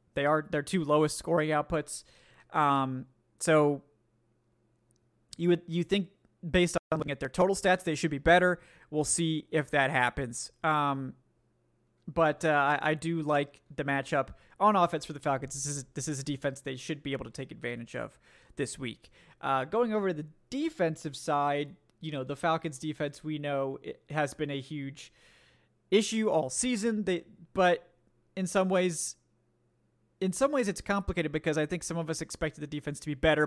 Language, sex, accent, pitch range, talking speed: English, male, American, 140-170 Hz, 185 wpm